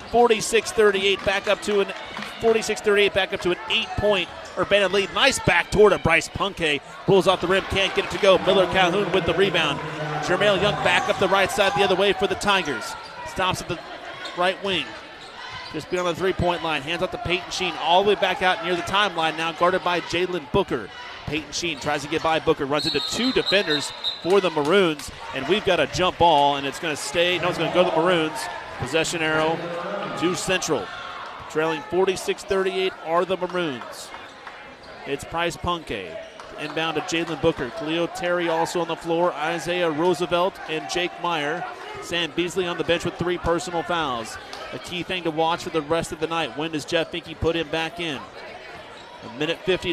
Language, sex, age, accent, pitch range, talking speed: English, male, 30-49, American, 160-190 Hz, 195 wpm